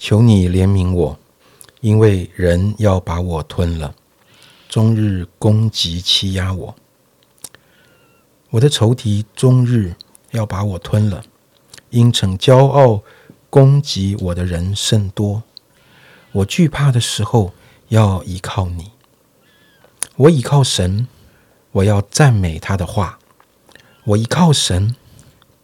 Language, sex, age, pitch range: Chinese, male, 50-69, 95-130 Hz